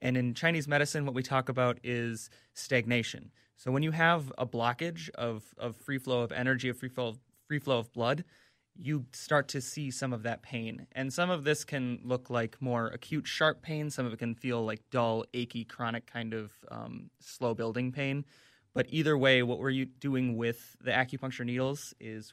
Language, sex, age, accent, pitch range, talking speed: English, male, 20-39, American, 115-135 Hz, 200 wpm